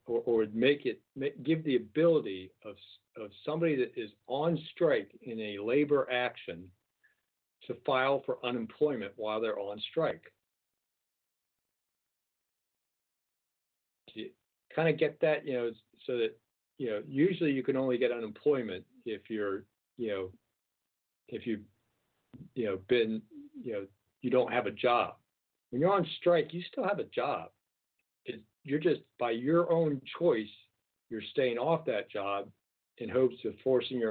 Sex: male